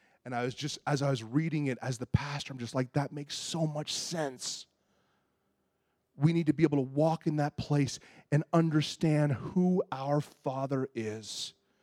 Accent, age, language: American, 30-49, English